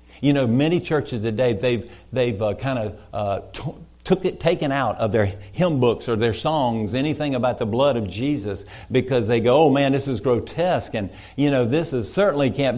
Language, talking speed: English, 205 wpm